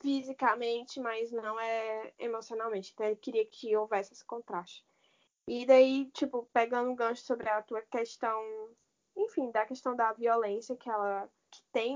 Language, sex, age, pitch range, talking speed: Portuguese, female, 10-29, 215-275 Hz, 160 wpm